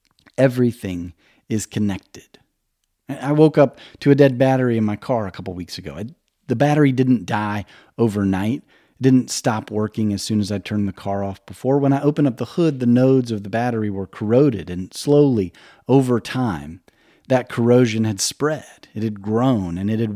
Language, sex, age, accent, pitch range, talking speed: English, male, 40-59, American, 100-130 Hz, 190 wpm